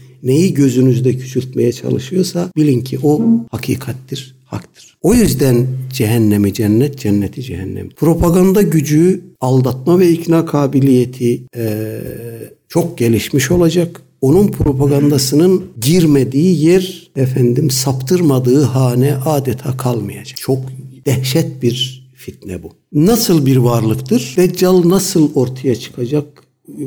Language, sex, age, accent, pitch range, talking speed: Turkish, male, 60-79, native, 125-160 Hz, 105 wpm